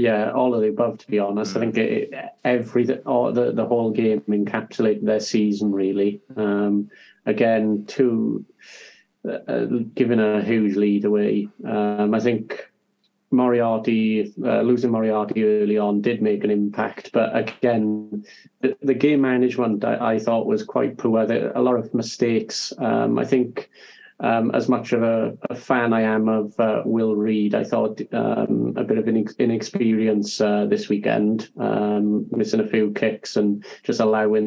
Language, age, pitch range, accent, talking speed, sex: English, 30-49, 105-120 Hz, British, 170 wpm, male